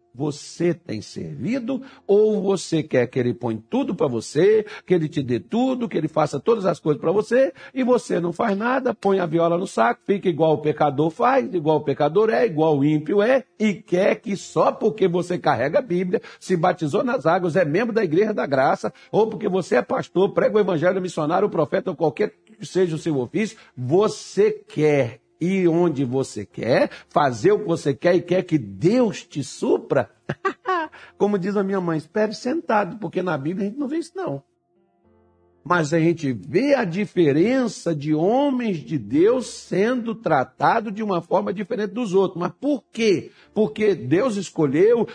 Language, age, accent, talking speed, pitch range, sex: Portuguese, 60-79, Brazilian, 185 wpm, 160-235 Hz, male